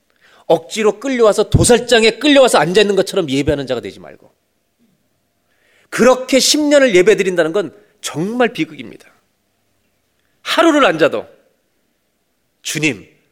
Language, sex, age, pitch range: Korean, male, 40-59, 160-245 Hz